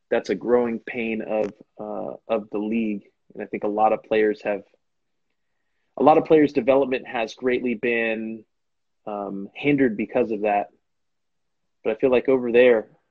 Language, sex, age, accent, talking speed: English, male, 20-39, American, 165 wpm